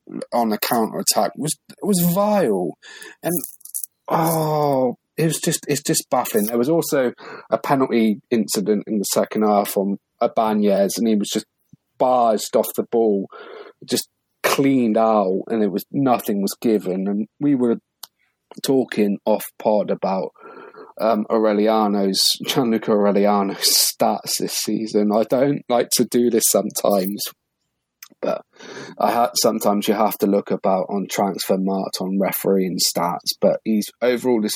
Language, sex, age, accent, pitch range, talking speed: English, male, 30-49, British, 100-120 Hz, 150 wpm